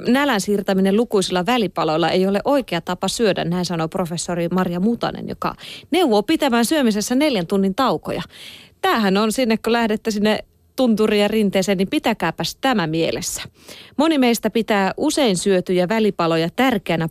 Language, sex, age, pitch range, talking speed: Finnish, female, 30-49, 180-240 Hz, 145 wpm